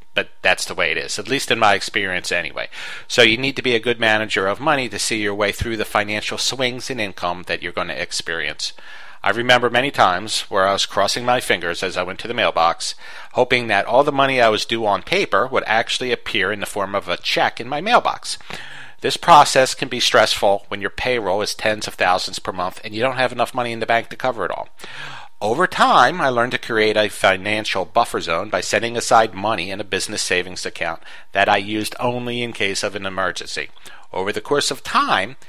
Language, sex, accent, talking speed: English, male, American, 230 wpm